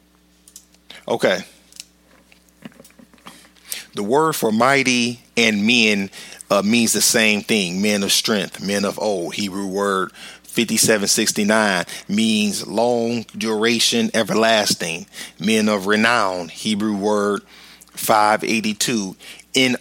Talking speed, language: 105 wpm, English